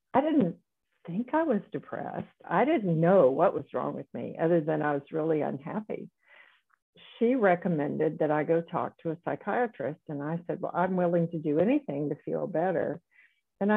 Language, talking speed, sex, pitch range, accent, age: English, 185 wpm, female, 165-200 Hz, American, 60-79